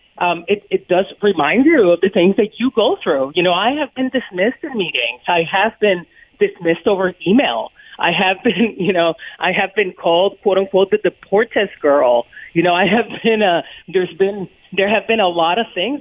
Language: English